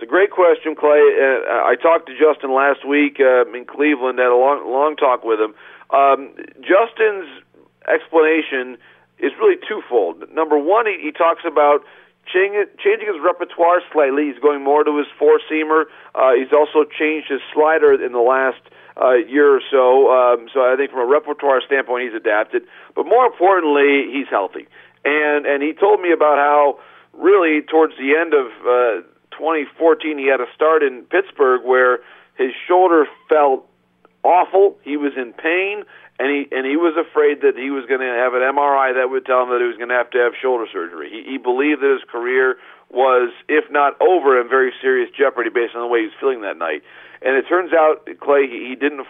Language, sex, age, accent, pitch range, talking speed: English, male, 40-59, American, 130-170 Hz, 195 wpm